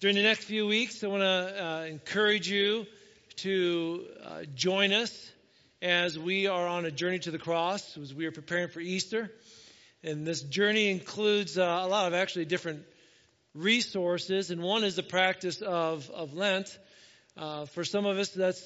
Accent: American